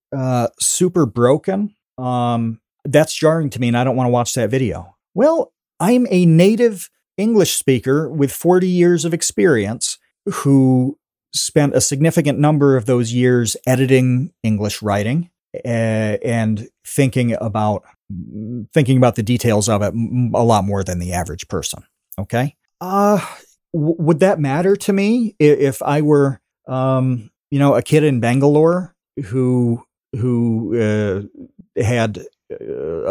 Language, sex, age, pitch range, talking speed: English, male, 40-59, 120-165 Hz, 140 wpm